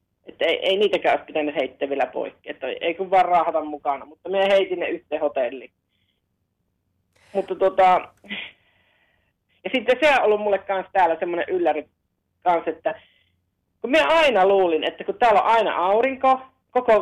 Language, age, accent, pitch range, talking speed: Finnish, 30-49, native, 150-225 Hz, 150 wpm